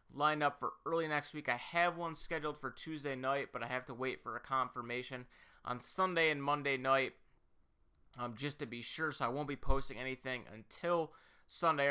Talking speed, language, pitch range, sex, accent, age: 195 wpm, English, 125-155 Hz, male, American, 30-49